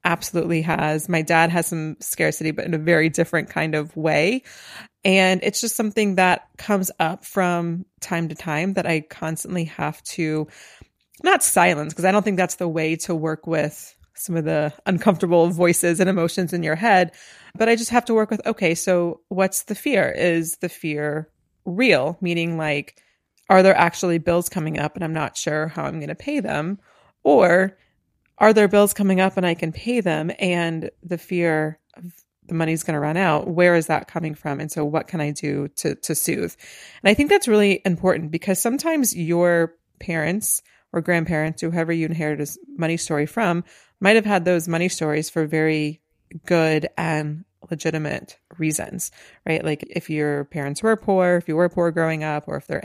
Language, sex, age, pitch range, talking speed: English, female, 30-49, 160-185 Hz, 190 wpm